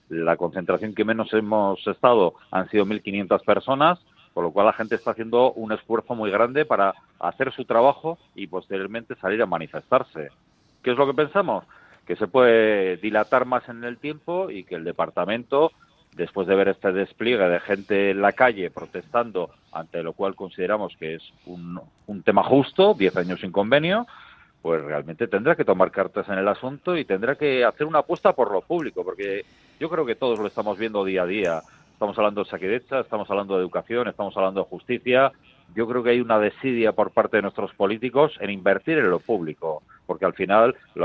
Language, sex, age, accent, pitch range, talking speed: Spanish, male, 40-59, Spanish, 95-125 Hz, 195 wpm